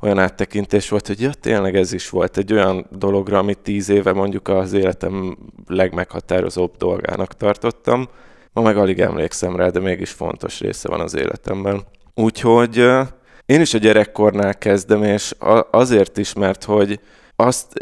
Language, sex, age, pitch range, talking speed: Hungarian, male, 20-39, 95-110 Hz, 150 wpm